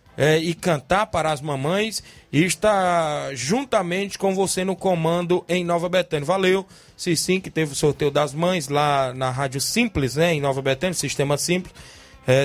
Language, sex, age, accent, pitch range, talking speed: Portuguese, male, 20-39, Brazilian, 150-180 Hz, 170 wpm